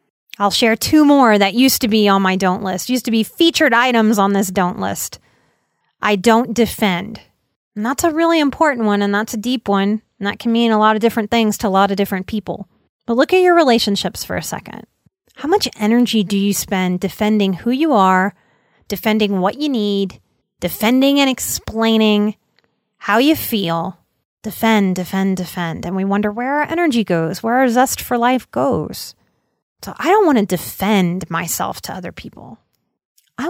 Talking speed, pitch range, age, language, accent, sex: 190 wpm, 200-275 Hz, 30-49, English, American, female